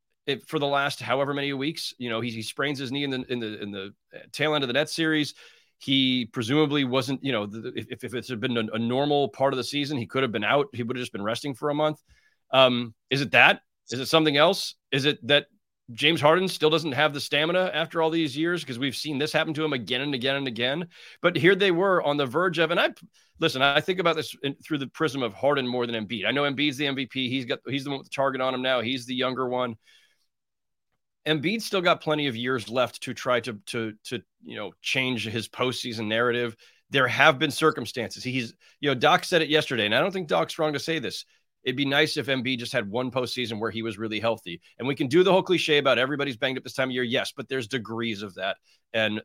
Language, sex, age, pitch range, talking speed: English, male, 30-49, 125-150 Hz, 255 wpm